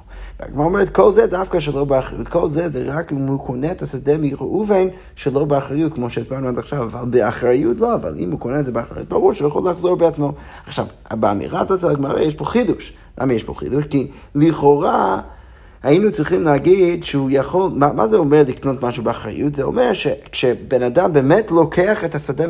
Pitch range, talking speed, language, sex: 130-170 Hz, 185 wpm, Hebrew, male